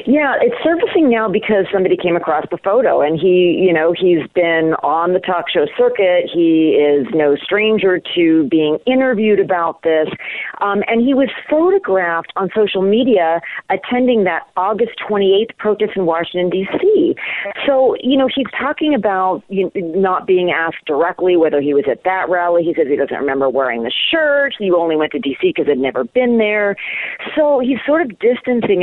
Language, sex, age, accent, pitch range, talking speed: English, female, 40-59, American, 160-245 Hz, 175 wpm